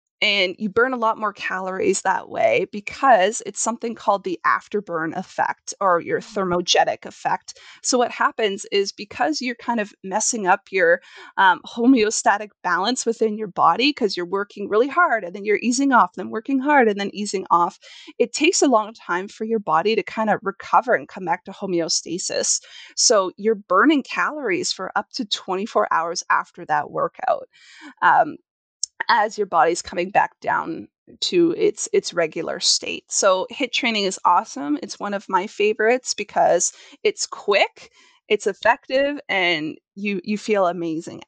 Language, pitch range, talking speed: English, 195-275 Hz, 165 wpm